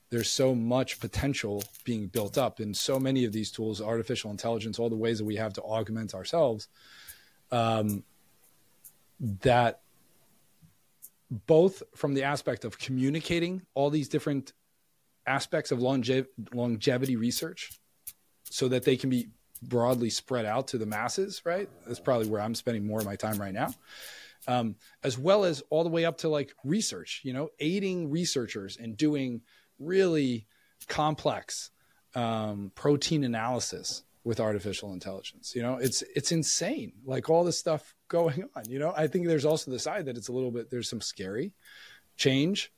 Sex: male